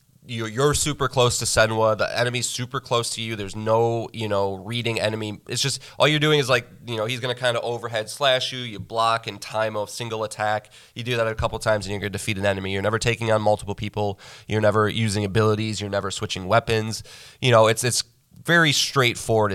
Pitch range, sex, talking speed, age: 105-125 Hz, male, 225 wpm, 20-39